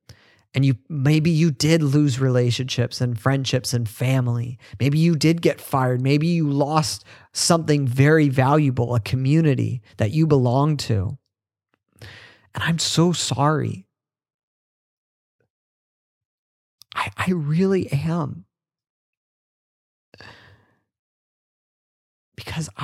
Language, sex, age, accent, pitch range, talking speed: English, male, 30-49, American, 125-155 Hz, 95 wpm